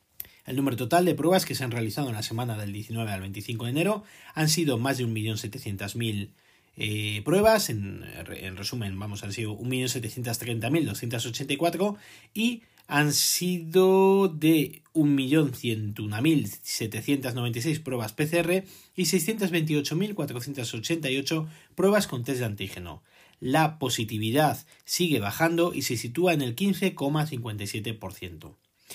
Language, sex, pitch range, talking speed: Spanish, male, 110-160 Hz, 115 wpm